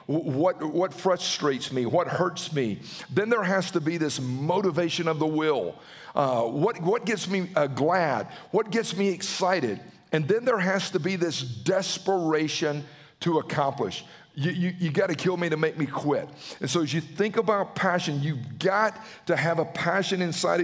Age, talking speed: 50-69, 185 wpm